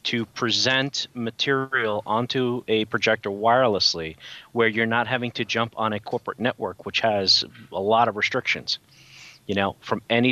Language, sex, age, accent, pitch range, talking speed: English, male, 30-49, American, 100-120 Hz, 155 wpm